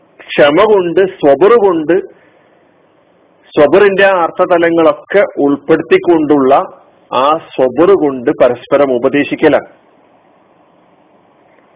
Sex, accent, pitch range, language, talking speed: male, native, 135-170 Hz, Malayalam, 55 wpm